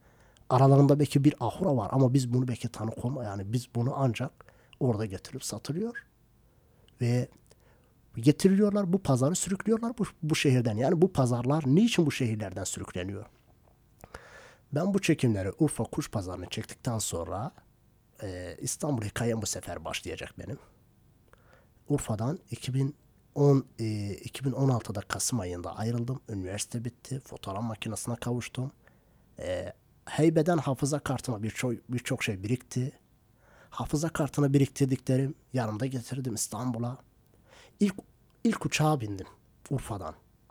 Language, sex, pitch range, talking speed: Turkish, male, 110-140 Hz, 120 wpm